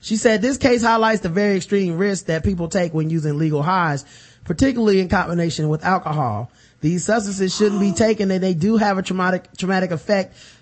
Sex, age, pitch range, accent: male, 20-39, 150-190 Hz, American